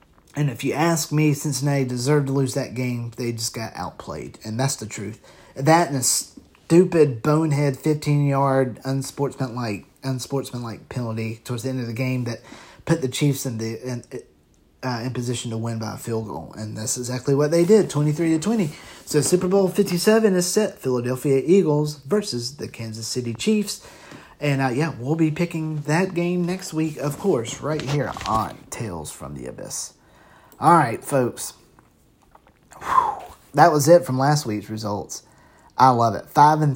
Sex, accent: male, American